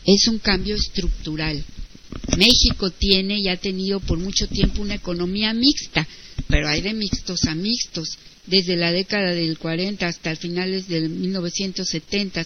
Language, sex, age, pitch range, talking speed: Spanish, female, 50-69, 170-200 Hz, 145 wpm